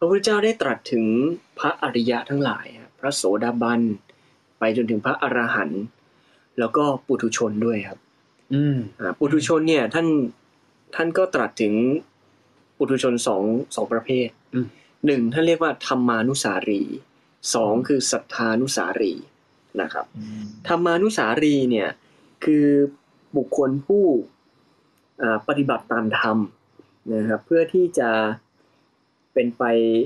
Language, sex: Thai, male